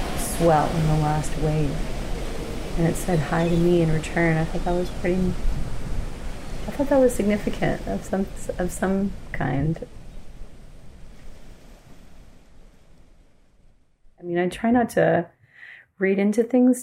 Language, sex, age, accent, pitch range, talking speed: English, female, 30-49, American, 150-180 Hz, 130 wpm